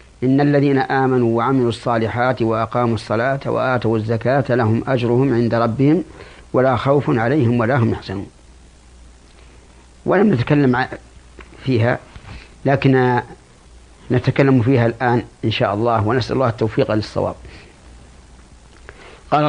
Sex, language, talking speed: male, Arabic, 105 wpm